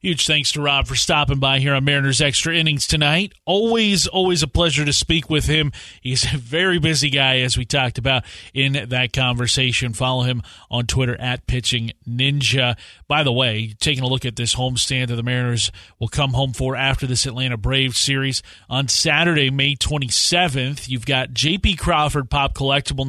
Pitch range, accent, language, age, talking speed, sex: 125-155 Hz, American, English, 30-49, 185 wpm, male